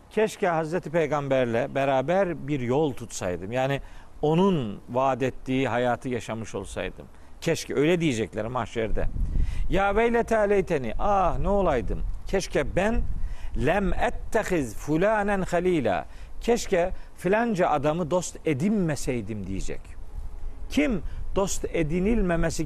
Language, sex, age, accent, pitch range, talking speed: Turkish, male, 50-69, native, 125-190 Hz, 105 wpm